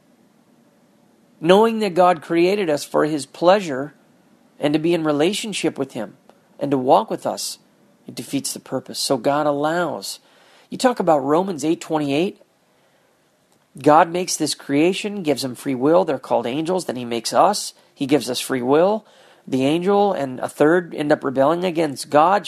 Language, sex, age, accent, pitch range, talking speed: English, male, 40-59, American, 150-190 Hz, 165 wpm